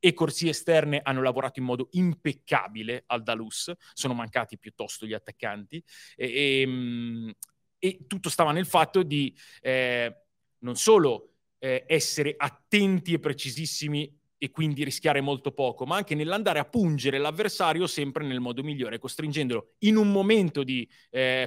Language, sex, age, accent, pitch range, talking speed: Italian, male, 30-49, native, 130-180 Hz, 145 wpm